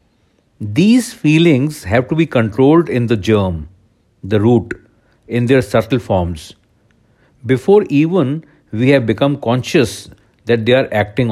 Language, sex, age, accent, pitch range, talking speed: English, male, 60-79, Indian, 110-145 Hz, 135 wpm